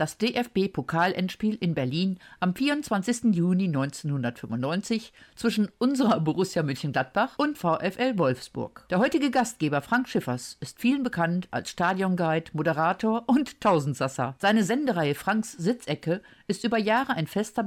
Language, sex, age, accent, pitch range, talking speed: German, female, 50-69, German, 155-230 Hz, 125 wpm